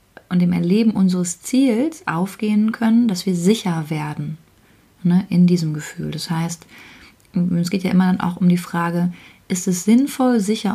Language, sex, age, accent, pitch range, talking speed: German, female, 30-49, German, 165-195 Hz, 160 wpm